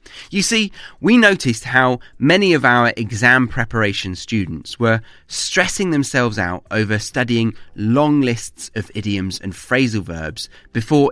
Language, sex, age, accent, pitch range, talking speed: English, male, 30-49, British, 105-145 Hz, 135 wpm